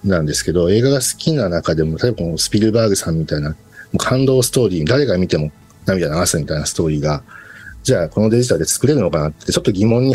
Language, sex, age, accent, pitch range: Japanese, male, 50-69, native, 80-125 Hz